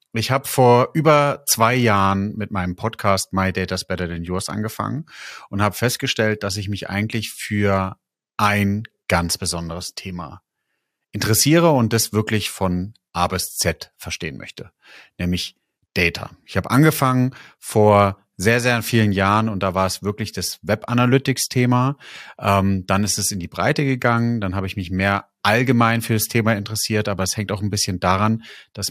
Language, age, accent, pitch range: German, 30-49, German, 90-110 Hz